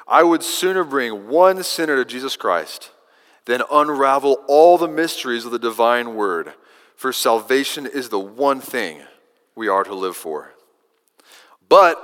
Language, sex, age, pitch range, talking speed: English, male, 30-49, 125-185 Hz, 150 wpm